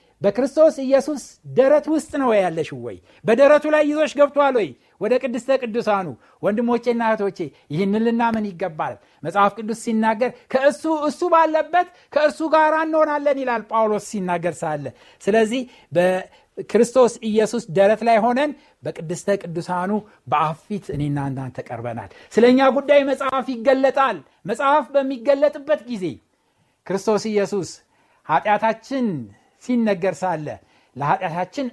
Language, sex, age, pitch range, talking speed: Amharic, male, 60-79, 170-270 Hz, 95 wpm